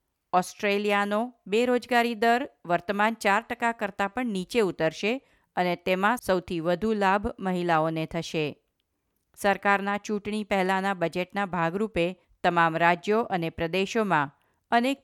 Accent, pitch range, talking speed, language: native, 170-215 Hz, 110 wpm, Gujarati